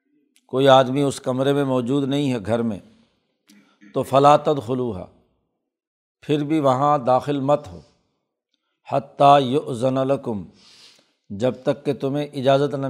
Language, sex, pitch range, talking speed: Urdu, male, 125-140 Hz, 130 wpm